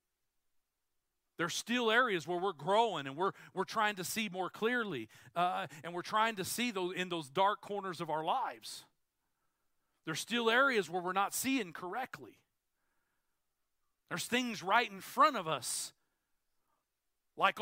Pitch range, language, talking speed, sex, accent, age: 185-245 Hz, English, 150 wpm, male, American, 40-59